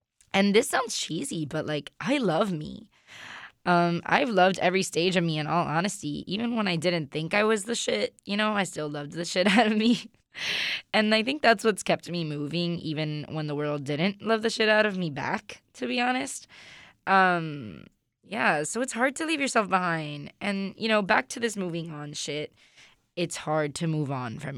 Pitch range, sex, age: 155-215 Hz, female, 20-39